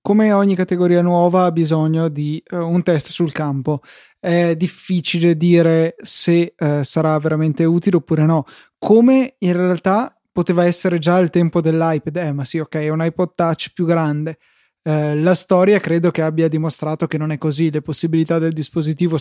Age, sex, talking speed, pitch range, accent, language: 20-39, male, 175 wpm, 160-180 Hz, native, Italian